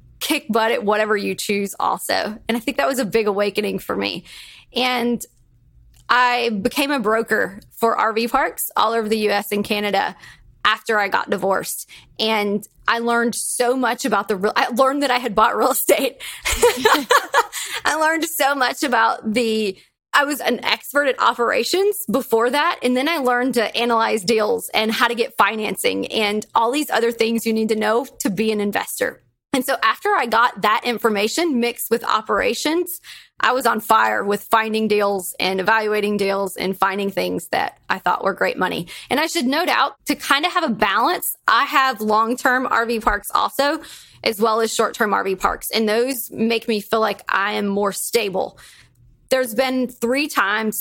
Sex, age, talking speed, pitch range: female, 30-49, 185 wpm, 210-250 Hz